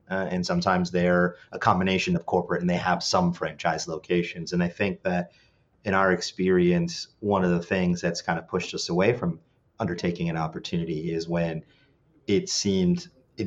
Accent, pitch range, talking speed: American, 85-105 Hz, 180 wpm